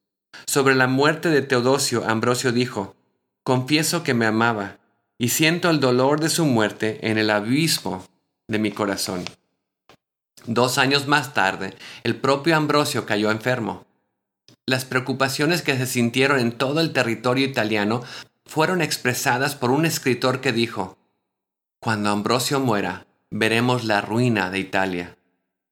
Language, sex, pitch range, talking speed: English, male, 105-140 Hz, 135 wpm